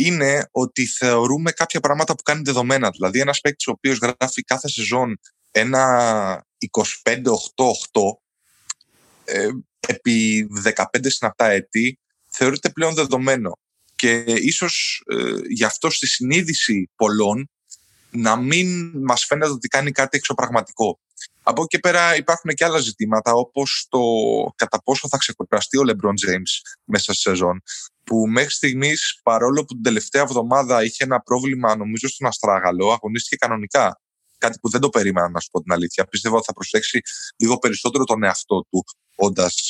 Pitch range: 110-145 Hz